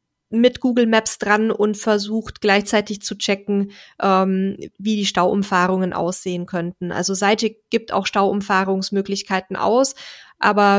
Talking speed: 120 wpm